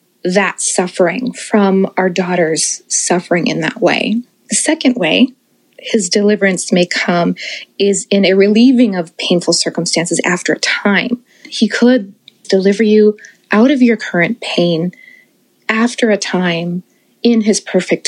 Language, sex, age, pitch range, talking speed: English, female, 20-39, 190-245 Hz, 135 wpm